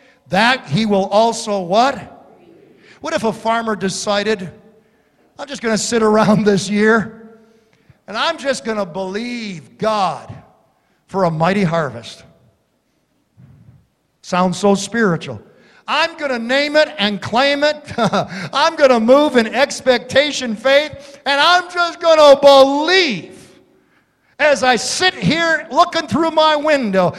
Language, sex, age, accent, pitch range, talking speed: English, male, 50-69, American, 185-275 Hz, 135 wpm